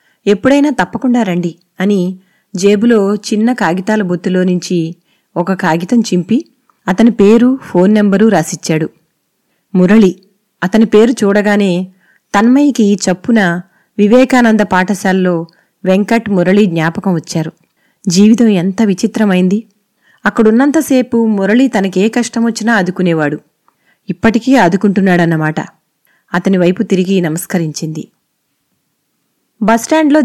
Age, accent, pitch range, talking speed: 30-49, native, 185-240 Hz, 85 wpm